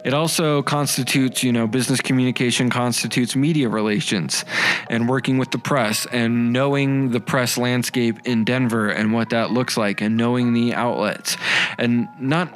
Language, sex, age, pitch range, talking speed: English, male, 20-39, 115-140 Hz, 160 wpm